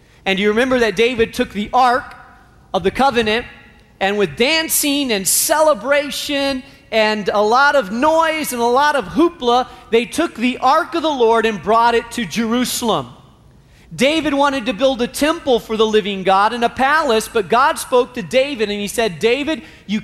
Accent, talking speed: American, 185 wpm